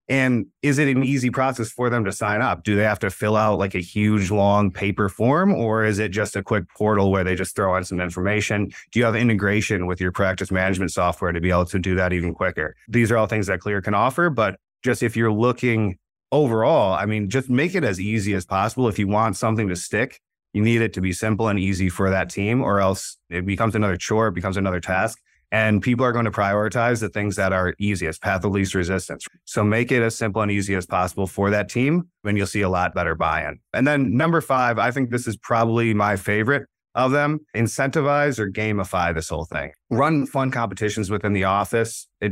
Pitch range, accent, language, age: 95-115 Hz, American, English, 30-49